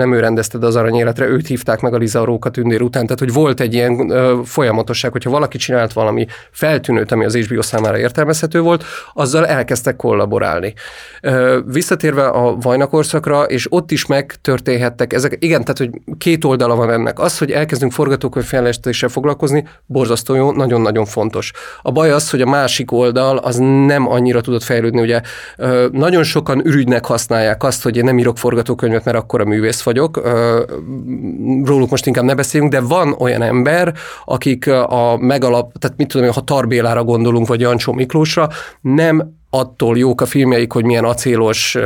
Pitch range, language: 120-140 Hz, Hungarian